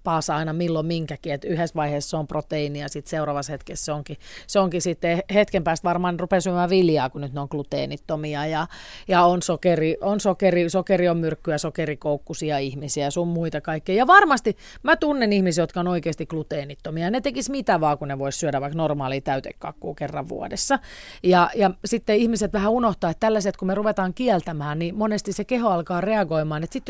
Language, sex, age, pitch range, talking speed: Finnish, female, 30-49, 160-220 Hz, 190 wpm